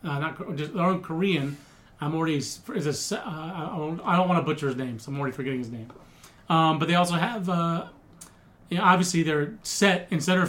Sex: male